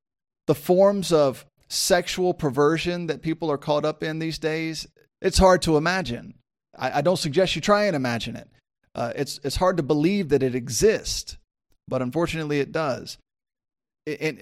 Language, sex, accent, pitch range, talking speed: English, male, American, 135-175 Hz, 165 wpm